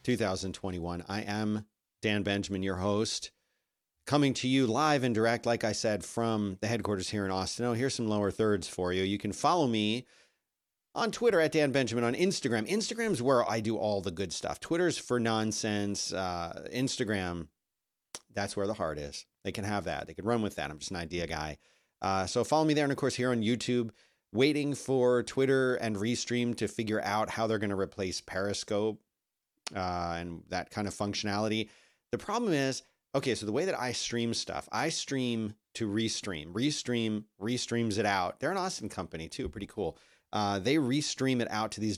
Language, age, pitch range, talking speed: English, 40-59, 95-120 Hz, 195 wpm